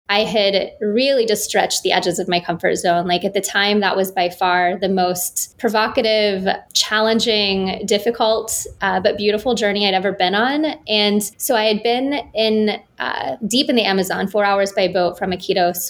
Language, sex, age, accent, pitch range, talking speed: English, female, 20-39, American, 185-215 Hz, 185 wpm